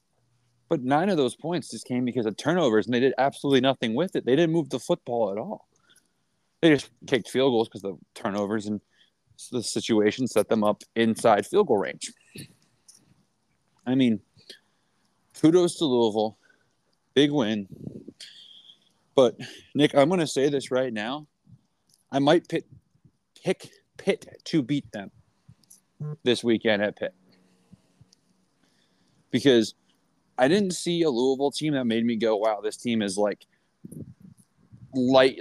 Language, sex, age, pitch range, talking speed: English, male, 30-49, 110-145 Hz, 145 wpm